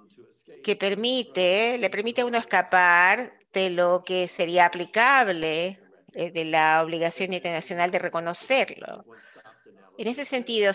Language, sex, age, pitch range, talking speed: Spanish, female, 50-69, 170-205 Hz, 125 wpm